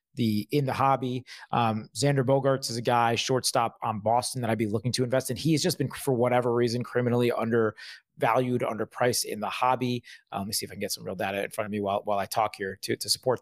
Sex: male